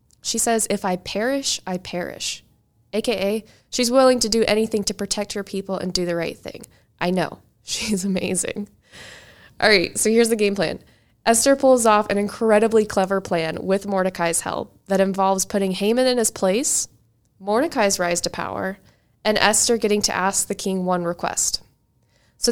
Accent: American